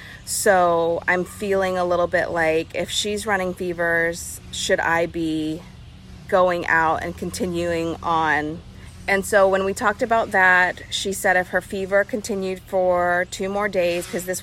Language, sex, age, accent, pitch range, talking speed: English, female, 30-49, American, 165-190 Hz, 160 wpm